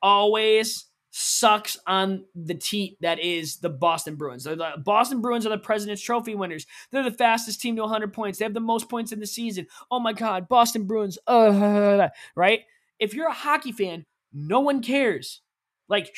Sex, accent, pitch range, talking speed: male, American, 180-225 Hz, 185 wpm